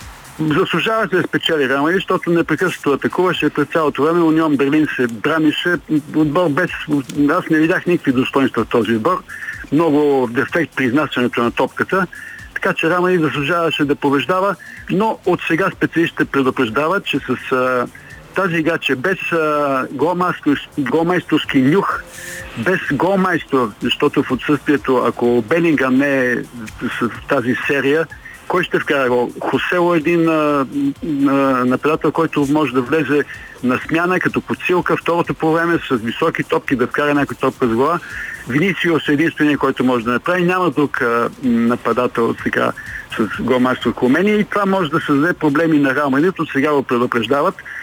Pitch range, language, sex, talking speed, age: 135-170 Hz, Bulgarian, male, 150 wpm, 60-79